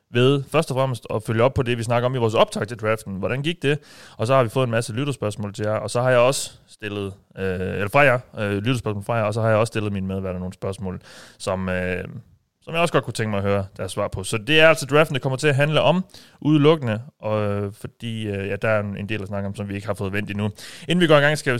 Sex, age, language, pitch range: male, 30-49, Danish, 105-135 Hz